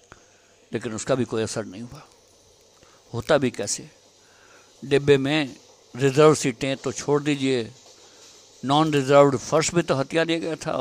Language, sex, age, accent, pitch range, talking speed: Hindi, male, 60-79, native, 120-175 Hz, 145 wpm